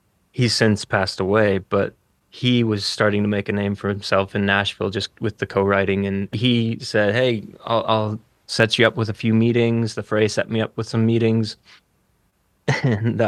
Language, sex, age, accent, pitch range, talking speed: English, male, 20-39, American, 100-115 Hz, 190 wpm